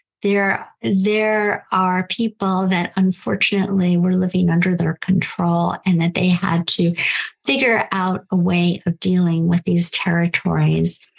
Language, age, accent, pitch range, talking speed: English, 50-69, American, 180-205 Hz, 135 wpm